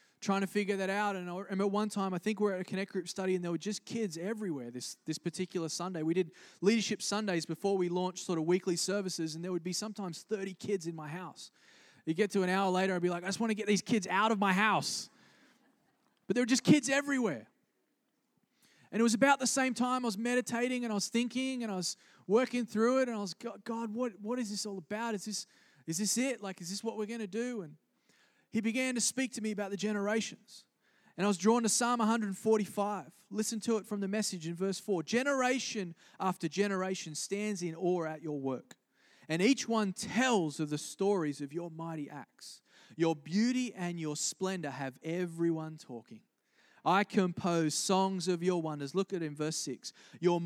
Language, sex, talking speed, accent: English, male, 220 wpm, Australian